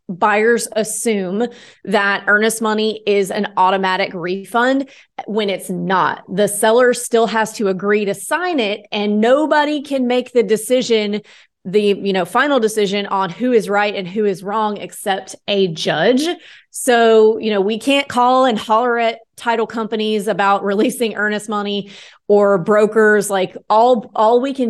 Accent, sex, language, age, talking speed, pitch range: American, female, English, 30-49, 160 wpm, 190-230 Hz